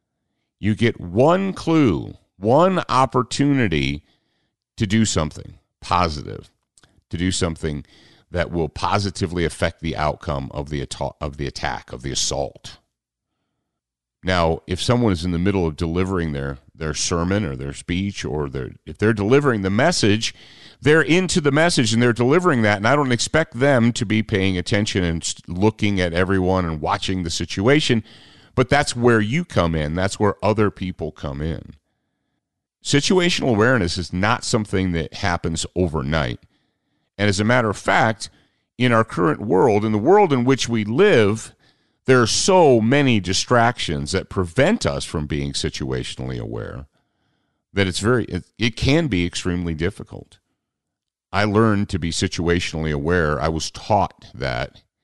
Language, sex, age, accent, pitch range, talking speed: English, male, 40-59, American, 80-115 Hz, 155 wpm